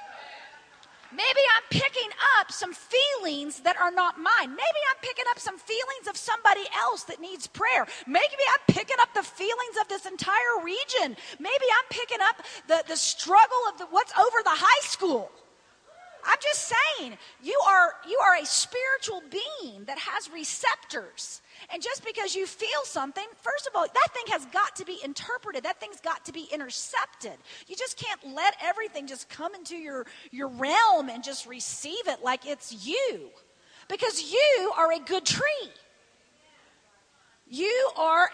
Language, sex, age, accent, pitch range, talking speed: English, female, 40-59, American, 320-435 Hz, 165 wpm